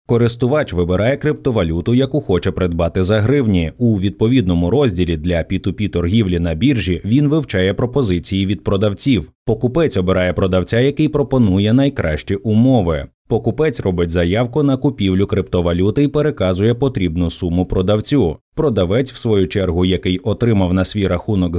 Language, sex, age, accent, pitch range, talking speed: Ukrainian, male, 30-49, native, 95-130 Hz, 135 wpm